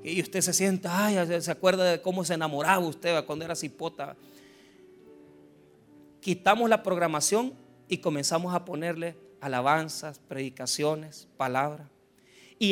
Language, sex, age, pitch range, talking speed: Spanish, male, 40-59, 135-185 Hz, 125 wpm